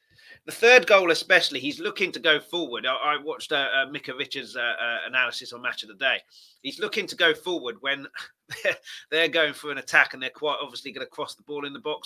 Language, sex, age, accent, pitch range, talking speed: English, male, 30-49, British, 130-175 Hz, 230 wpm